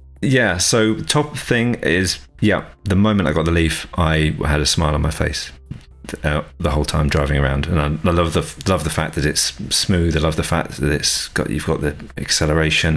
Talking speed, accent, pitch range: 210 wpm, British, 80-105 Hz